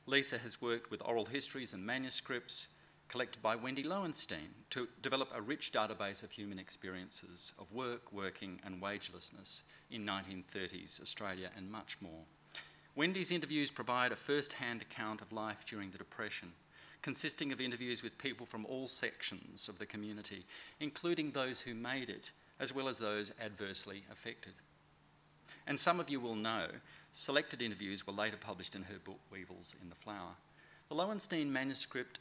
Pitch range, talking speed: 100-130 Hz, 160 wpm